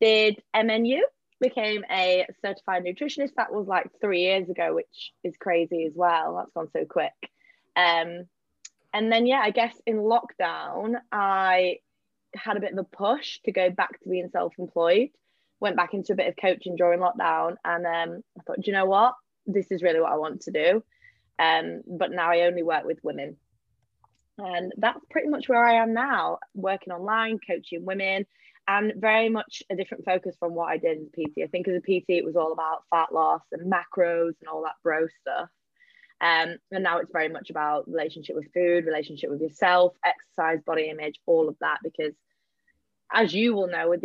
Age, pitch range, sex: 20-39, 170-210 Hz, female